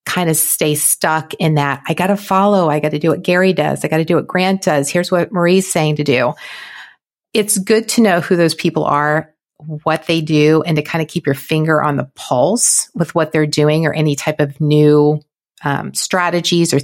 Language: English